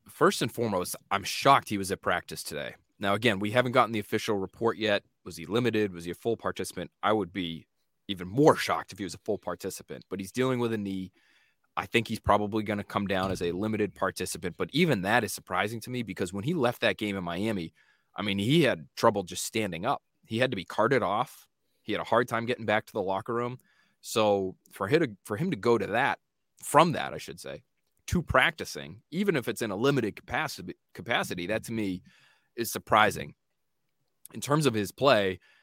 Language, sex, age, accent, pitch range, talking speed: English, male, 20-39, American, 95-120 Hz, 220 wpm